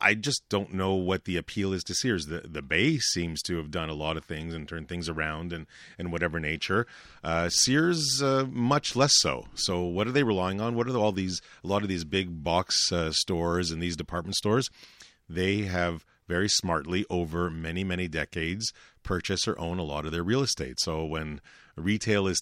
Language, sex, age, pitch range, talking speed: English, male, 40-59, 80-100 Hz, 210 wpm